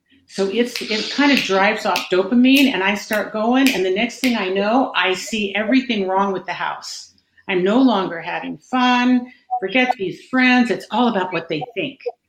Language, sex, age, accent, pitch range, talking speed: English, female, 50-69, American, 190-250 Hz, 185 wpm